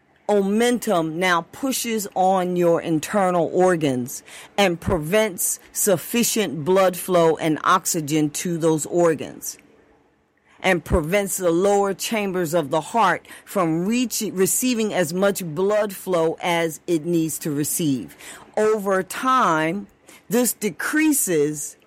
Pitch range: 160-200 Hz